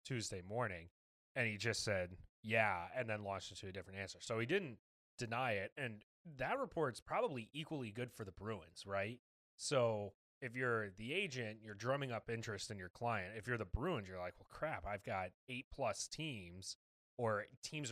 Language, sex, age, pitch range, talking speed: English, male, 30-49, 100-130 Hz, 190 wpm